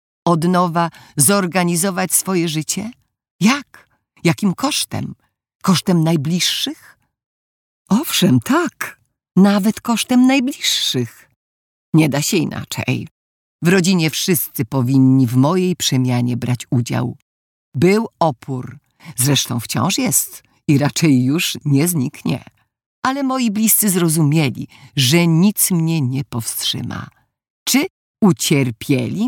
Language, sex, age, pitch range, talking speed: Polish, female, 50-69, 130-195 Hz, 100 wpm